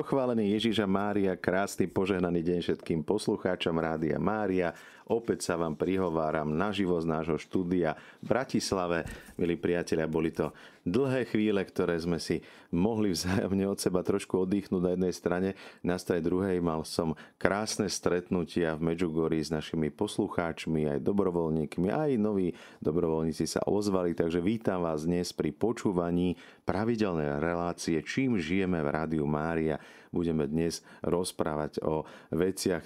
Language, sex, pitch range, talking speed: Slovak, male, 75-90 Hz, 135 wpm